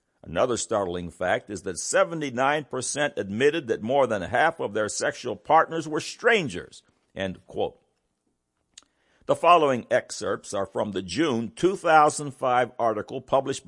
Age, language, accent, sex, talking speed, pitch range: 60-79, English, American, male, 125 wpm, 115-160 Hz